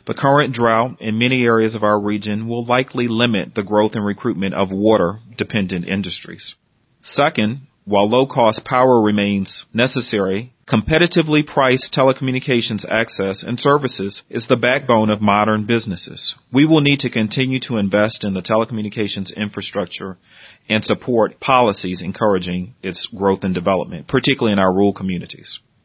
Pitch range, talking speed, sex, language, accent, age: 100-125 Hz, 140 wpm, male, English, American, 40-59